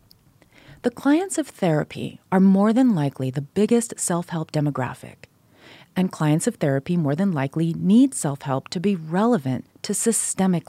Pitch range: 145-215 Hz